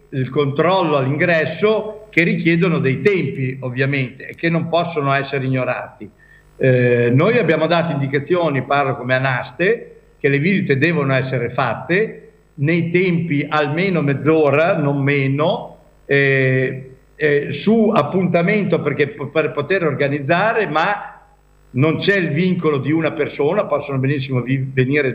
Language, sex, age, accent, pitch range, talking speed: Italian, male, 50-69, native, 140-180 Hz, 120 wpm